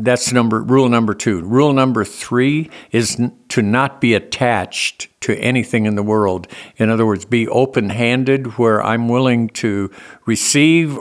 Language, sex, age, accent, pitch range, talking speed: English, male, 60-79, American, 110-130 Hz, 165 wpm